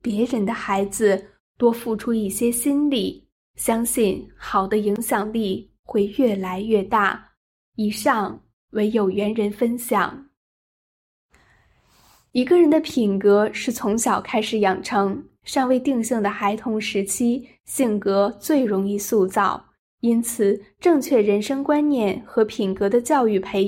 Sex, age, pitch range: female, 10-29, 205-250 Hz